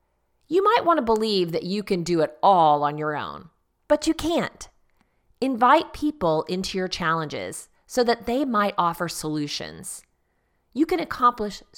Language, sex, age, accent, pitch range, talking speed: English, female, 30-49, American, 160-270 Hz, 160 wpm